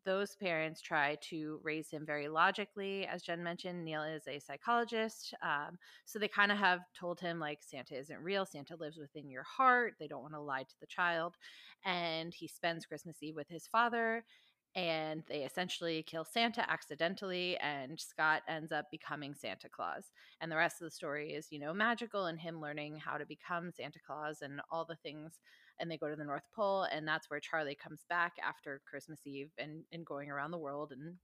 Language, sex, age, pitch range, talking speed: English, female, 20-39, 150-180 Hz, 205 wpm